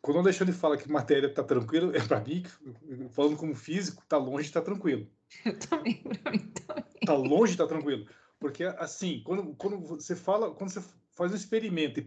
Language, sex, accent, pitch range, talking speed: Portuguese, male, Brazilian, 135-180 Hz, 195 wpm